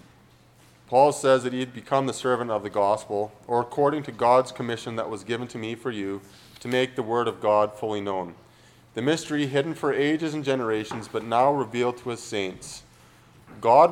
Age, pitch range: 30-49, 110-135 Hz